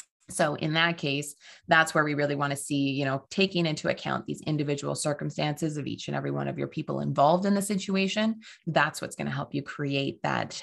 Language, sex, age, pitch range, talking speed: English, female, 20-39, 145-185 Hz, 220 wpm